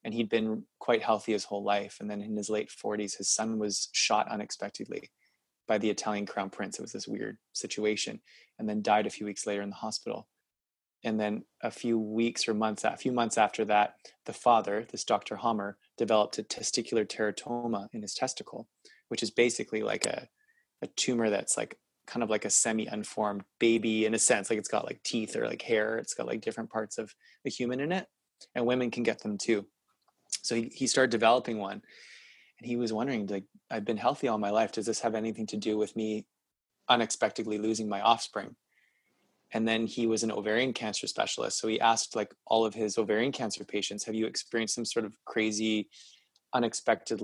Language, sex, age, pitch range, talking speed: English, male, 20-39, 105-115 Hz, 200 wpm